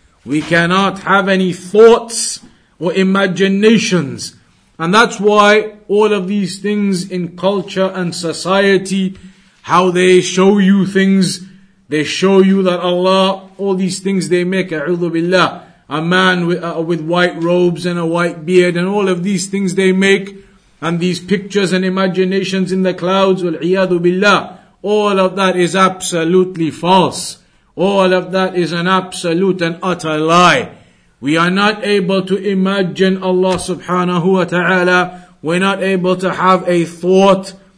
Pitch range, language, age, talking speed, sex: 175-195 Hz, English, 50-69, 145 wpm, male